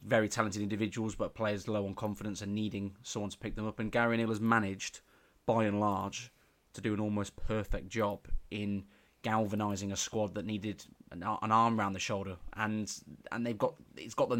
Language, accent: English, British